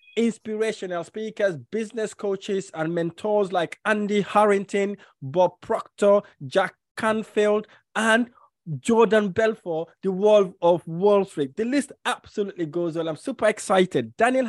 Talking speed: 125 wpm